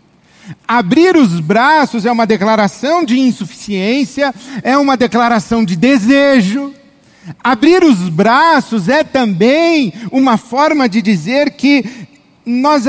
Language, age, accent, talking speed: Portuguese, 50-69, Brazilian, 110 wpm